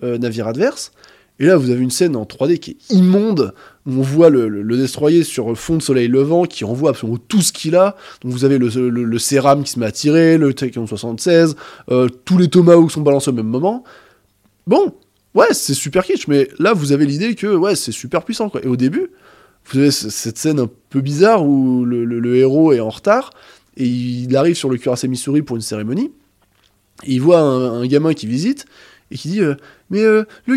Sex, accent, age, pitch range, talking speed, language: male, French, 20-39, 125-190 Hz, 230 wpm, French